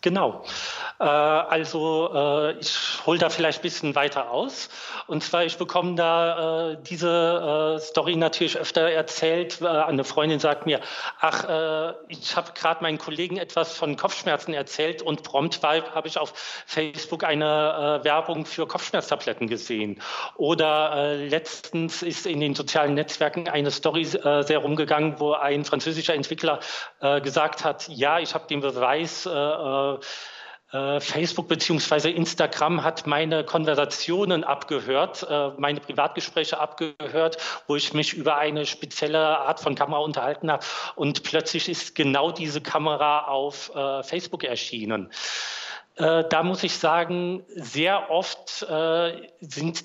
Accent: German